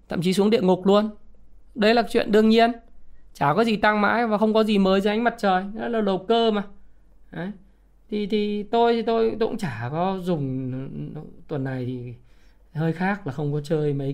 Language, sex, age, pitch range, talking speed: Vietnamese, male, 20-39, 155-220 Hz, 215 wpm